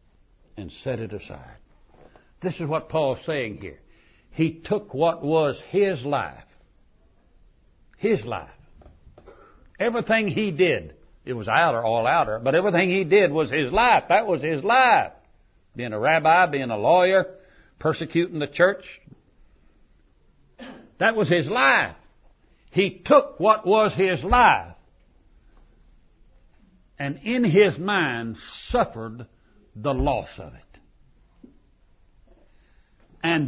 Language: English